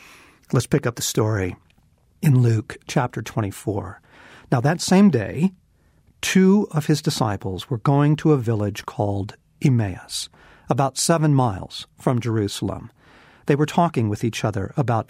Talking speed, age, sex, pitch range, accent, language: 145 wpm, 50-69, male, 110-140 Hz, American, English